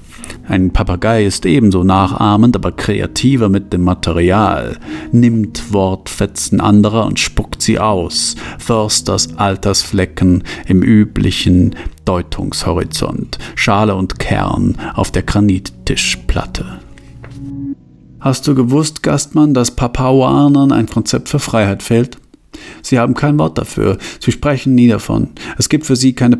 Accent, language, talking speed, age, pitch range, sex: German, German, 120 wpm, 50-69, 95-135 Hz, male